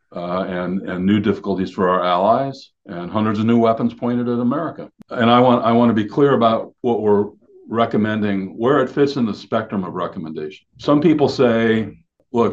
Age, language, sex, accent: 50-69, English, male, American